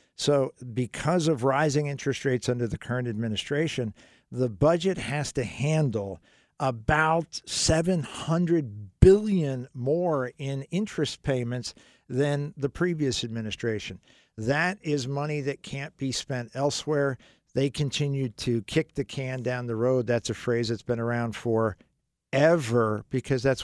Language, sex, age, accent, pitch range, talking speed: English, male, 50-69, American, 115-145 Hz, 130 wpm